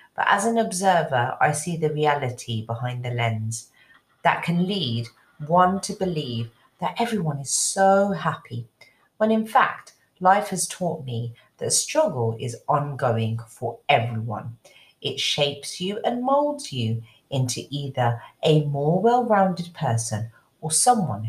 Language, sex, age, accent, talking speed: English, female, 40-59, British, 140 wpm